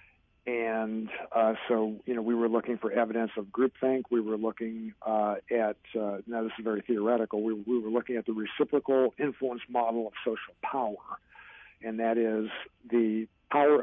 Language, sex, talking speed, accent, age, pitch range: English, male, 175 wpm, American, 50-69, 110-125 Hz